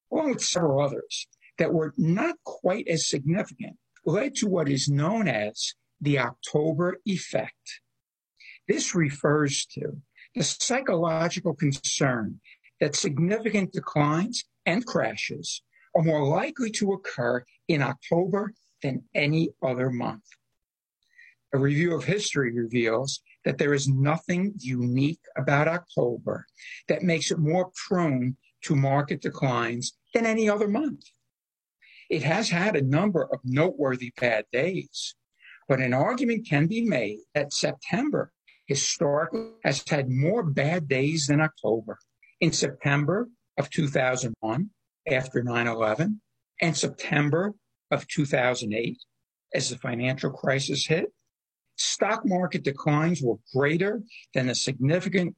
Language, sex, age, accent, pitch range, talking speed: English, male, 60-79, American, 135-180 Hz, 120 wpm